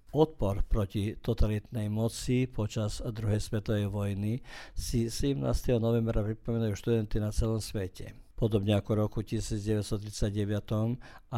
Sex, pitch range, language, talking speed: male, 105-120 Hz, Croatian, 110 wpm